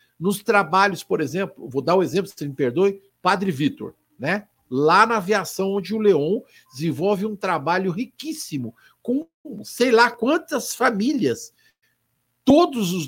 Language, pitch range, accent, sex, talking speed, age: Portuguese, 140-225 Hz, Brazilian, male, 145 wpm, 60-79